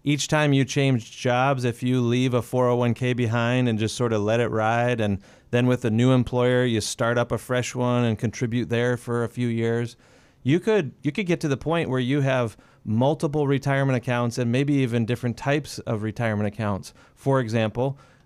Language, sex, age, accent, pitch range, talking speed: English, male, 30-49, American, 120-145 Hz, 205 wpm